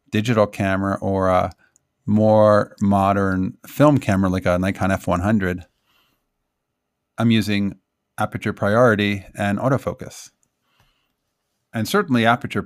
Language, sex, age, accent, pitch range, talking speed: English, male, 40-59, American, 95-115 Hz, 100 wpm